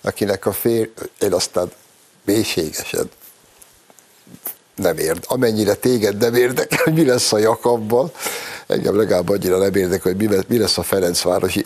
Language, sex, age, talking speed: Hungarian, male, 60-79, 140 wpm